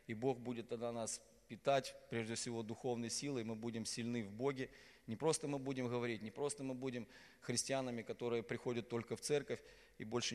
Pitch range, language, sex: 120-140 Hz, Russian, male